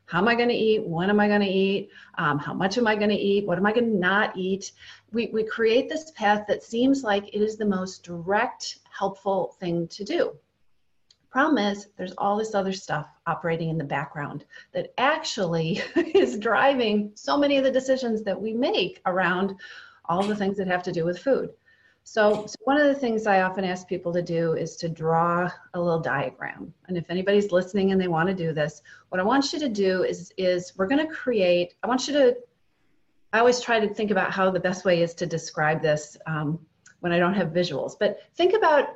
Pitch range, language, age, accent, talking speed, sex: 175-230 Hz, English, 40-59, American, 220 wpm, female